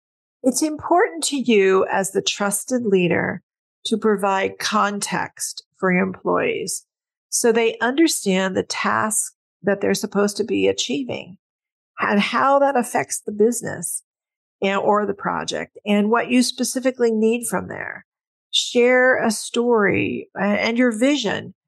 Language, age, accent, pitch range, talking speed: English, 50-69, American, 185-235 Hz, 130 wpm